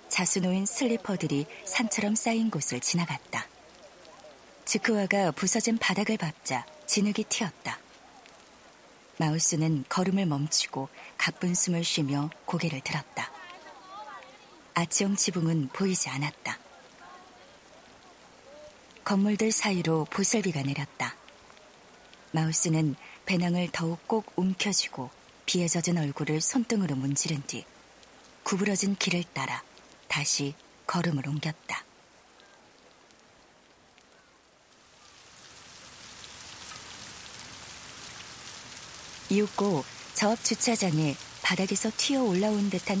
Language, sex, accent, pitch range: Korean, female, native, 155-205 Hz